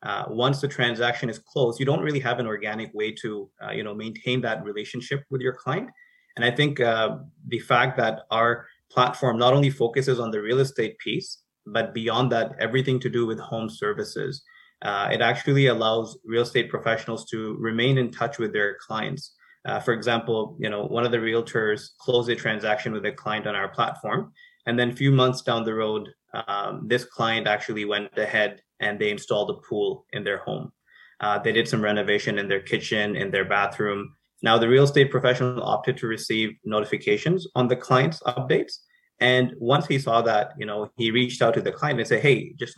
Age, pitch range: 20-39, 110-130 Hz